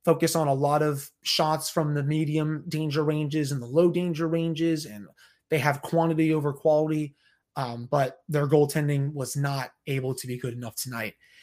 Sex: male